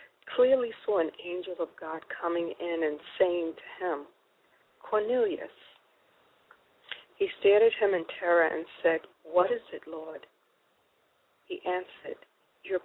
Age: 40-59